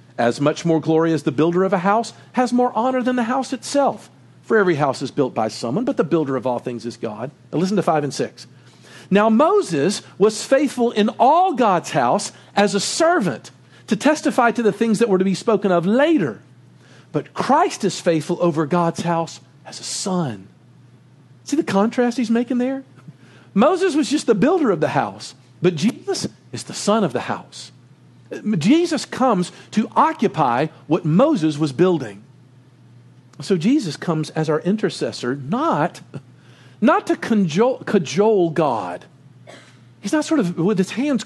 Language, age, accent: English, 50-69, American